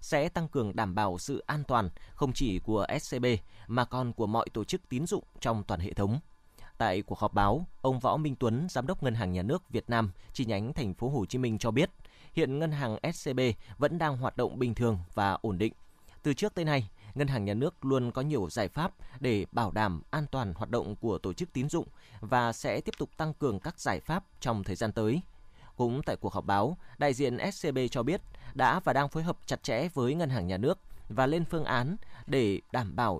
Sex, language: male, Vietnamese